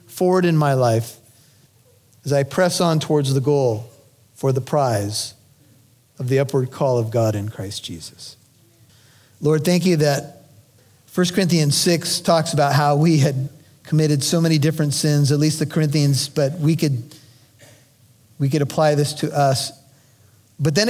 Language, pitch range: English, 125-155 Hz